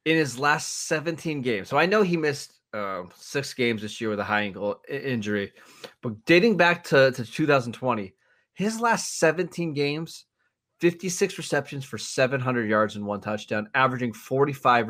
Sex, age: male, 20-39